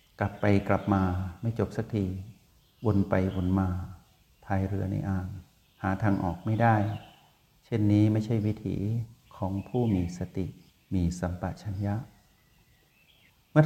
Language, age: Thai, 60-79